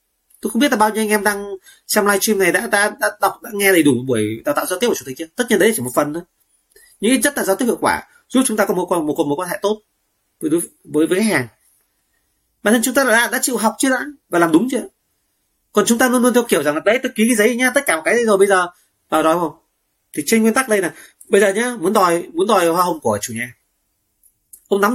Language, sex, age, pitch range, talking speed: Vietnamese, male, 30-49, 150-245 Hz, 290 wpm